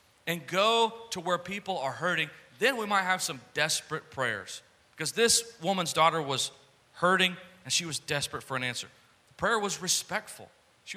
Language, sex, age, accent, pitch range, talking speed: English, male, 40-59, American, 130-170 Hz, 175 wpm